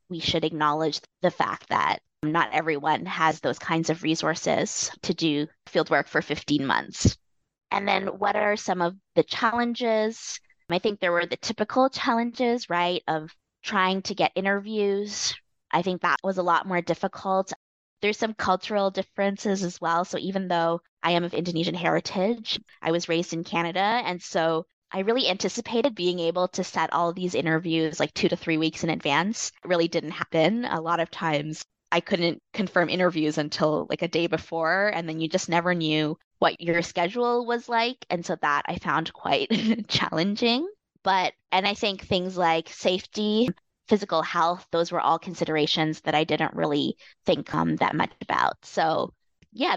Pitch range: 160-200 Hz